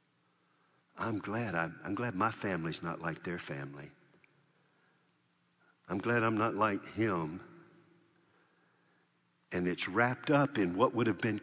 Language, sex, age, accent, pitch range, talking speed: English, male, 60-79, American, 95-120 Hz, 135 wpm